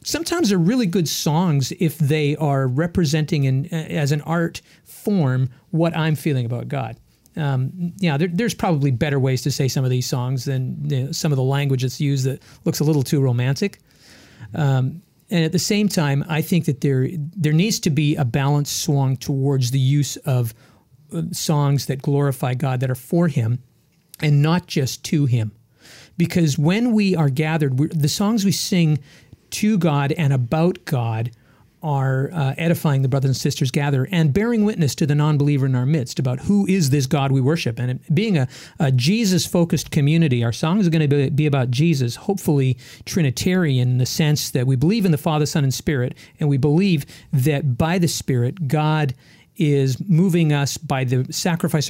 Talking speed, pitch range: 190 wpm, 135-165 Hz